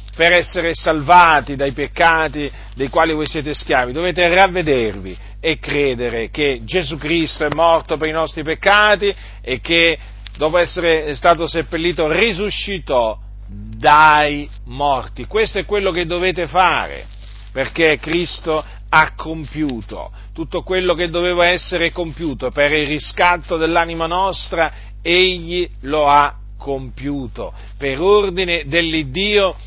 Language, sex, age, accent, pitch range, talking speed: Italian, male, 40-59, native, 135-175 Hz, 120 wpm